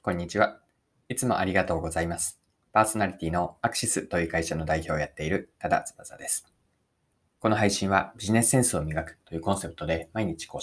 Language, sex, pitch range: Japanese, male, 80-125 Hz